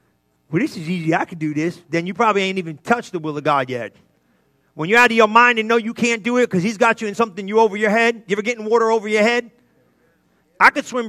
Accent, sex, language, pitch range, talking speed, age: American, male, English, 190-245 Hz, 275 wpm, 30-49